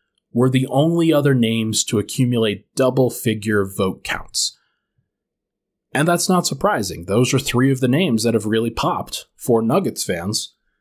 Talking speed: 150 wpm